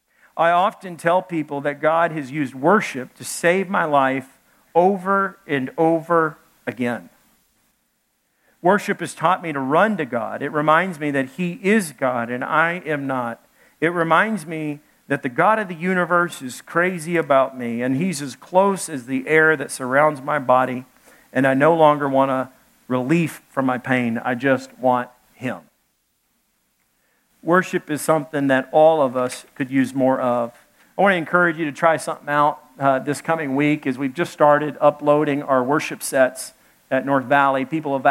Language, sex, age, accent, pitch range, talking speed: English, male, 50-69, American, 135-170 Hz, 175 wpm